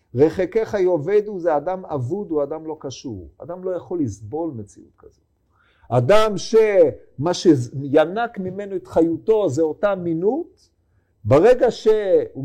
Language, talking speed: Hebrew, 125 wpm